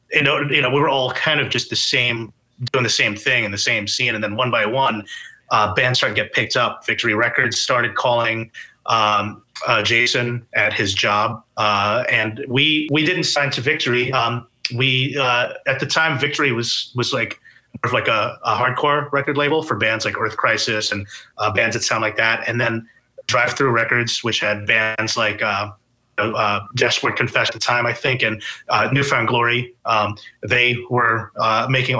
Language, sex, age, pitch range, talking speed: English, male, 30-49, 110-130 Hz, 195 wpm